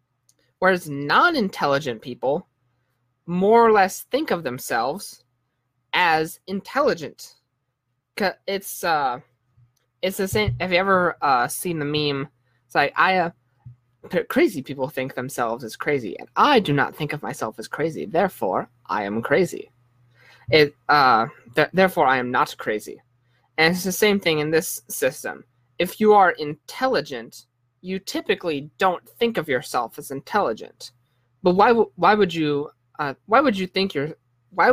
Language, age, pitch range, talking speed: English, 20-39, 125-190 Hz, 150 wpm